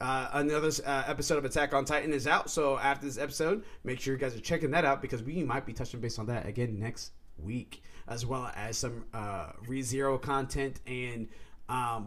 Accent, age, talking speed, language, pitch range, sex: American, 20-39, 210 wpm, English, 120-155 Hz, male